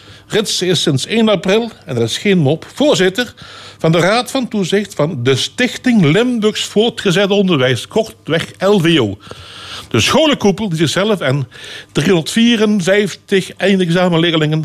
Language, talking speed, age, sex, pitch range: Dutch, 125 wpm, 60-79, male, 125-185 Hz